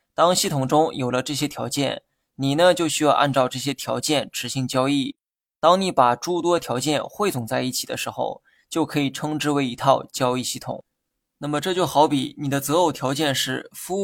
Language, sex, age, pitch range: Chinese, male, 20-39, 130-160 Hz